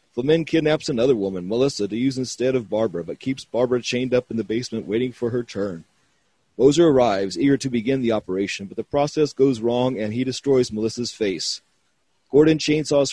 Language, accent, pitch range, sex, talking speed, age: English, American, 115-140 Hz, male, 190 wpm, 40-59